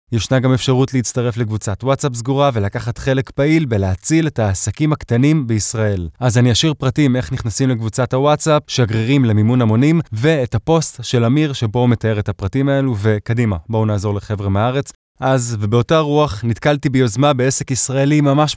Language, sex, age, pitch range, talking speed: English, male, 20-39, 110-140 Hz, 155 wpm